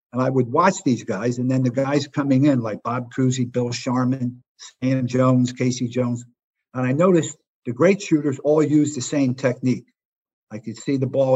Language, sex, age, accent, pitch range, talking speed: English, male, 50-69, American, 120-145 Hz, 195 wpm